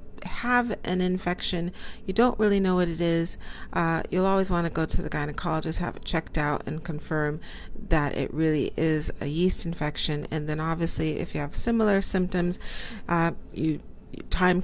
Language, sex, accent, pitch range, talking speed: English, female, American, 145-175 Hz, 175 wpm